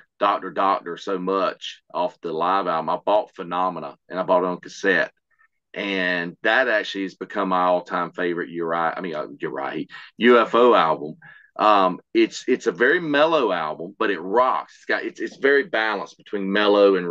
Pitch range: 90-110 Hz